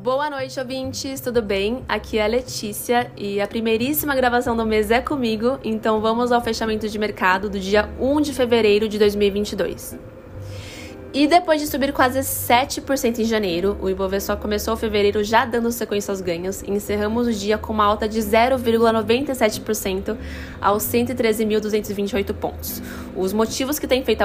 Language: Portuguese